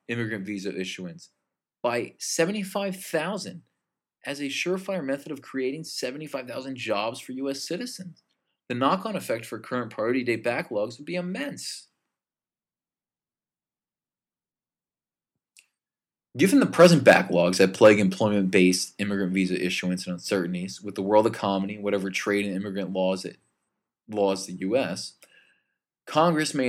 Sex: male